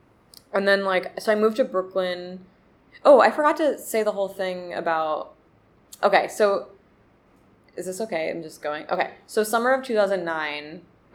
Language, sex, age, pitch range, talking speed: English, female, 20-39, 165-195 Hz, 160 wpm